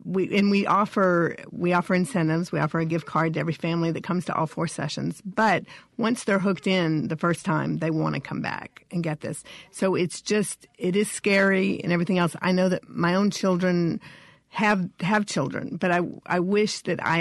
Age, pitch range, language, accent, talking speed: 50-69, 165-190 Hz, English, American, 215 wpm